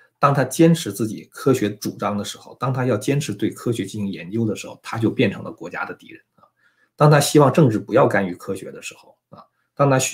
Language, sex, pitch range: Chinese, male, 100-135 Hz